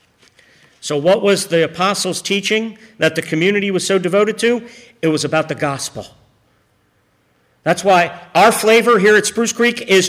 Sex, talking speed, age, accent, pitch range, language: male, 160 wpm, 50-69, American, 140-195 Hz, English